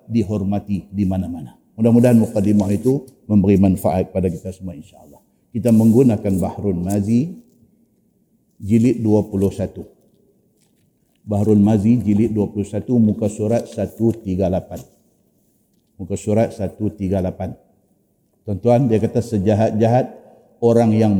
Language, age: Malay, 50-69